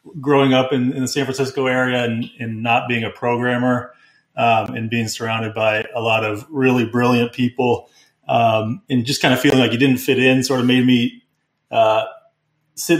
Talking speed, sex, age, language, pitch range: 195 wpm, male, 30-49, English, 115-130 Hz